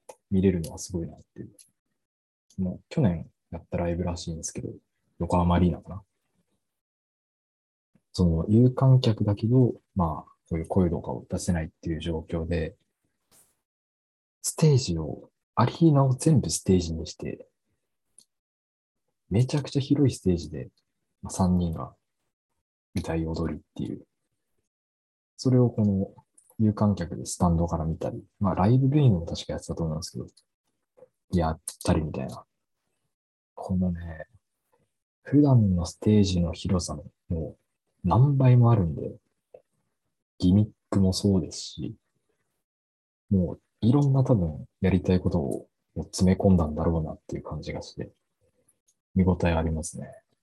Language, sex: Japanese, male